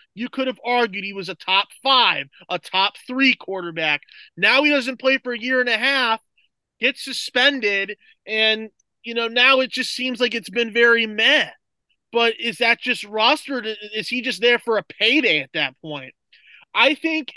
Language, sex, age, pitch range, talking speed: English, male, 20-39, 185-270 Hz, 185 wpm